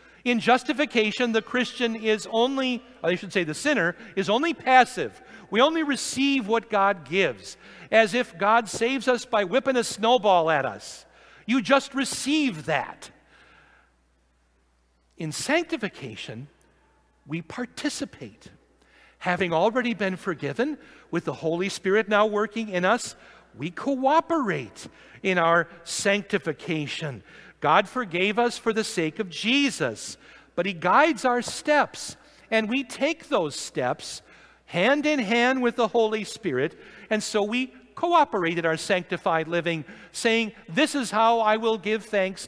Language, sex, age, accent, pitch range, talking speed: English, male, 60-79, American, 190-250 Hz, 135 wpm